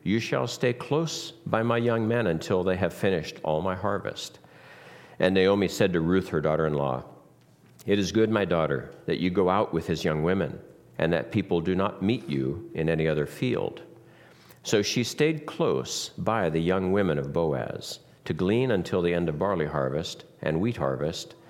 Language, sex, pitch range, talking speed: English, male, 75-100 Hz, 185 wpm